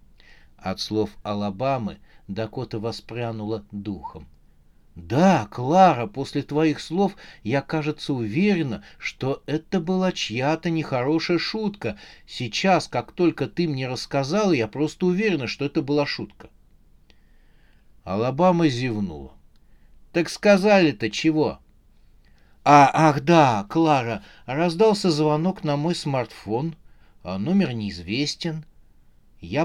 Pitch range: 110-165 Hz